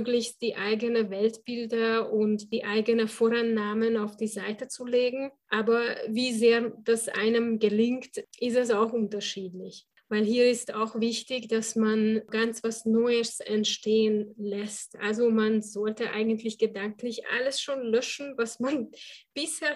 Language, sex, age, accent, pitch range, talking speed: German, female, 20-39, Swiss, 215-235 Hz, 135 wpm